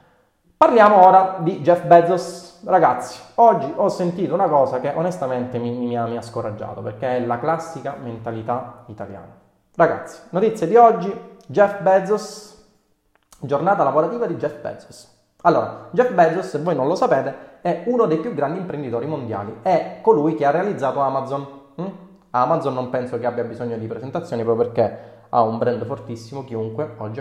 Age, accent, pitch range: 30-49, native, 120-175 Hz